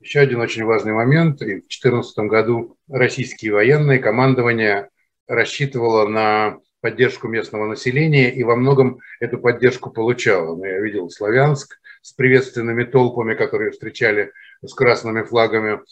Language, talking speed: Russian, 130 wpm